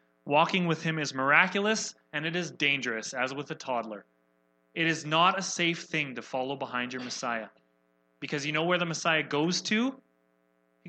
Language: English